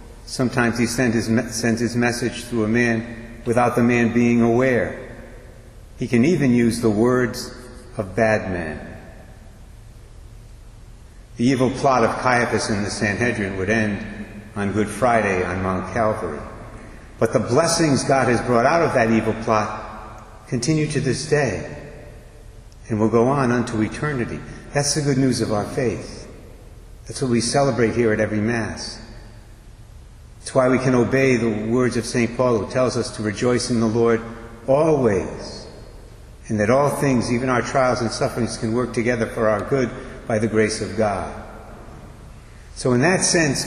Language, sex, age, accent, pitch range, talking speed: English, male, 60-79, American, 110-125 Hz, 165 wpm